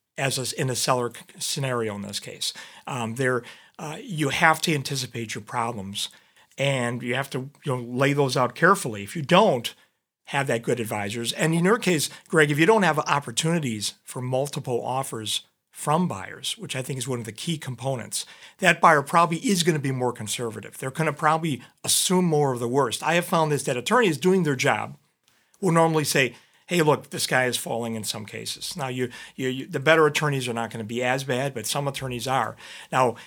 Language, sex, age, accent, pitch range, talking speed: English, male, 40-59, American, 120-155 Hz, 205 wpm